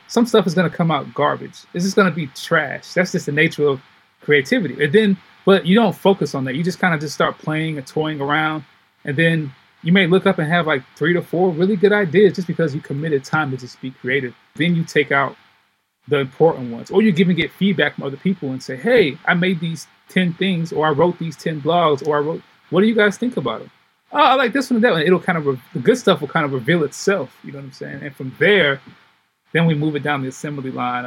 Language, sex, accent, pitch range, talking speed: English, male, American, 140-185 Hz, 265 wpm